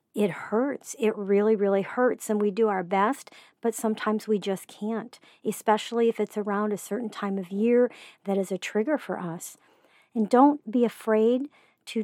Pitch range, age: 200-235 Hz, 50-69